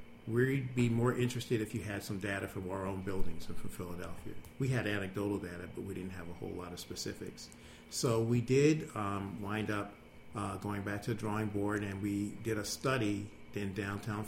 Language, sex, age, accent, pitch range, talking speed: English, male, 50-69, American, 95-110 Hz, 205 wpm